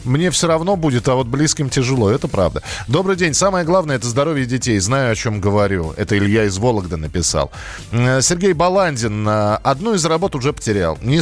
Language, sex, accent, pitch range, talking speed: Russian, male, native, 110-150 Hz, 185 wpm